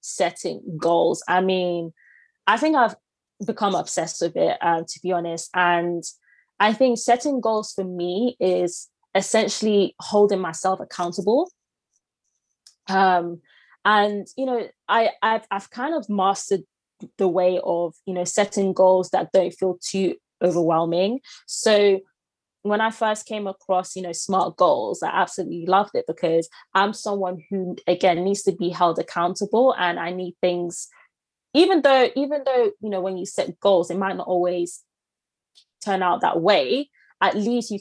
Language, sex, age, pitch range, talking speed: English, female, 20-39, 180-215 Hz, 155 wpm